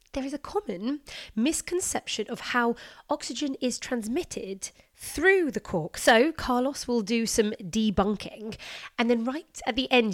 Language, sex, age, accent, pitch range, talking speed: English, female, 30-49, British, 210-270 Hz, 150 wpm